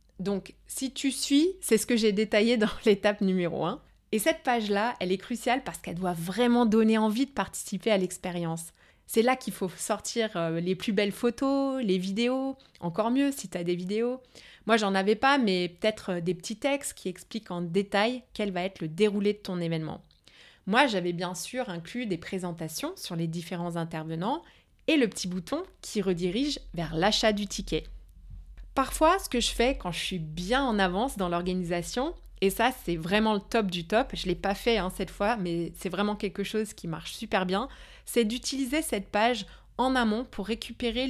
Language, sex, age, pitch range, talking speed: French, female, 20-39, 185-245 Hz, 195 wpm